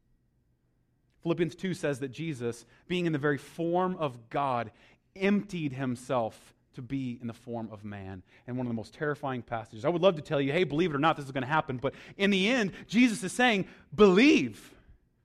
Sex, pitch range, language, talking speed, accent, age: male, 150-225 Hz, English, 205 wpm, American, 30-49